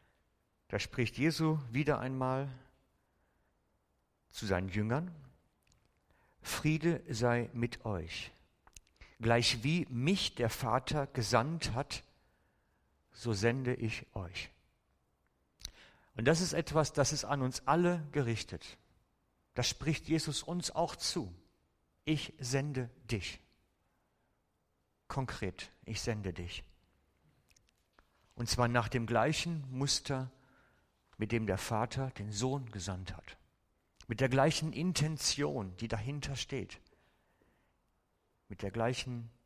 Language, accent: German, German